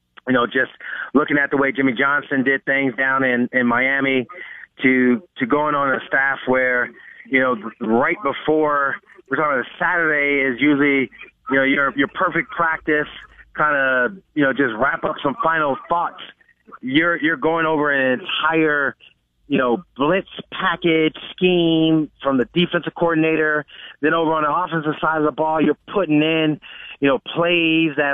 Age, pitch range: 30-49, 135-160 Hz